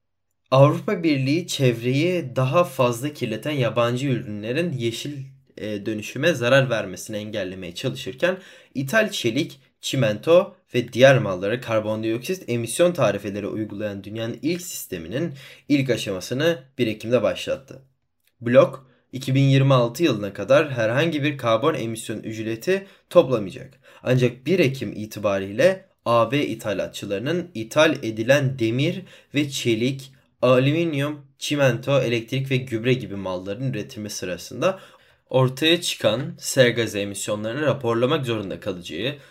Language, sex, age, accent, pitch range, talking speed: Turkish, male, 20-39, native, 110-150 Hz, 105 wpm